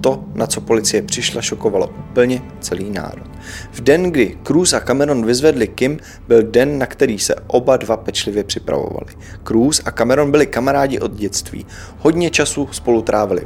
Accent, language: native, Czech